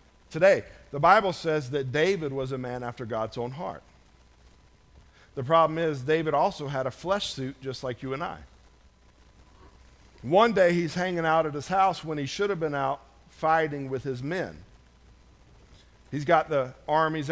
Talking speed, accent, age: 170 wpm, American, 50-69